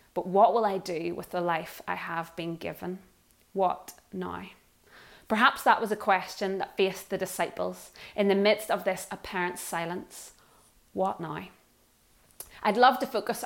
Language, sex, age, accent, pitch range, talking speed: English, female, 20-39, British, 180-210 Hz, 160 wpm